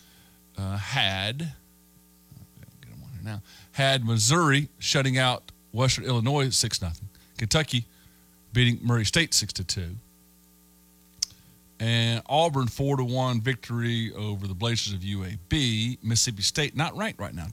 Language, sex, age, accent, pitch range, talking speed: English, male, 50-69, American, 95-130 Hz, 125 wpm